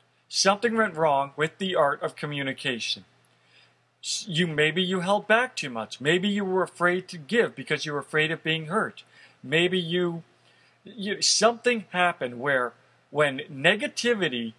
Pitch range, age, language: 145-185 Hz, 40-59, English